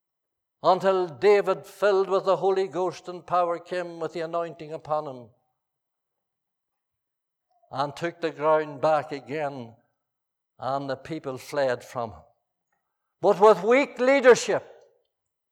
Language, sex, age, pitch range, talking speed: English, male, 60-79, 165-240 Hz, 120 wpm